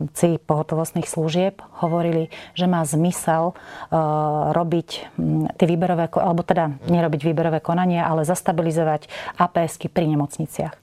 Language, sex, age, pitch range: Slovak, female, 30-49, 160-195 Hz